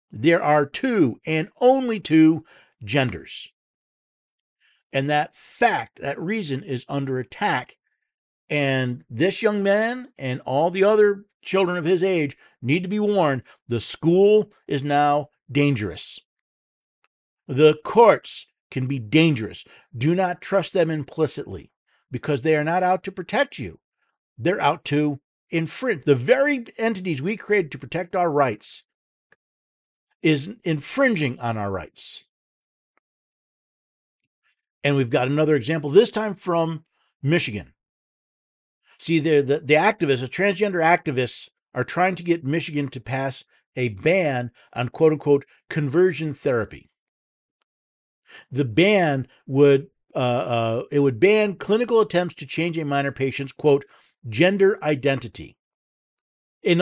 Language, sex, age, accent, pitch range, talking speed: English, male, 50-69, American, 135-185 Hz, 125 wpm